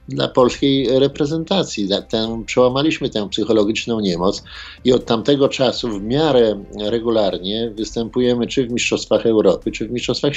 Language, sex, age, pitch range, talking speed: Polish, male, 50-69, 100-125 Hz, 125 wpm